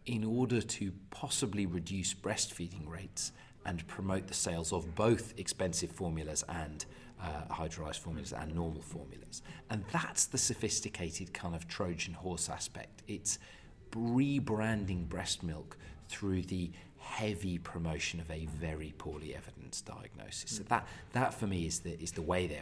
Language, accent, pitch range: English, British, 85-105 Hz